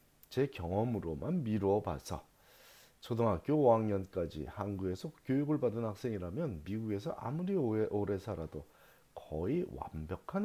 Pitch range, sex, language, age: 85-115 Hz, male, Korean, 40-59